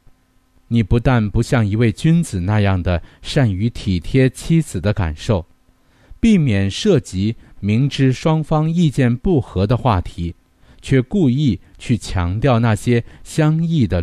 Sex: male